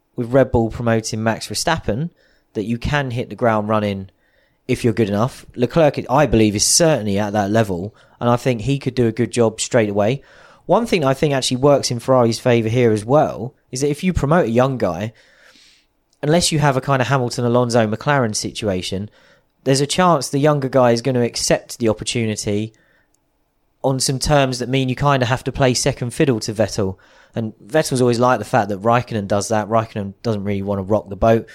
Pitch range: 105-135 Hz